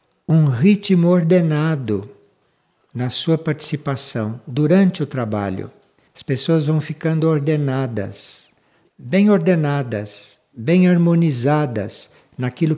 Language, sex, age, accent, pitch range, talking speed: Portuguese, male, 60-79, Brazilian, 125-165 Hz, 90 wpm